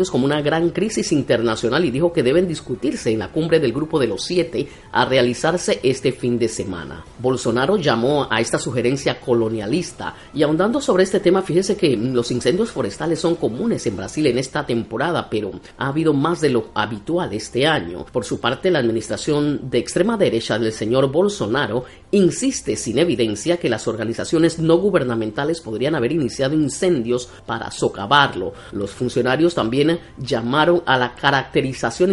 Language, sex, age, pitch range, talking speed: Spanish, female, 40-59, 120-175 Hz, 165 wpm